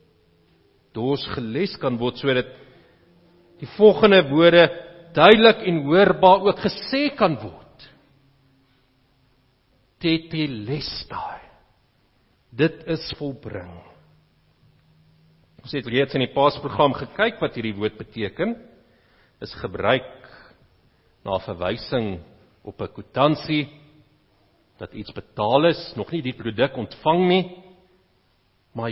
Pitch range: 130-190 Hz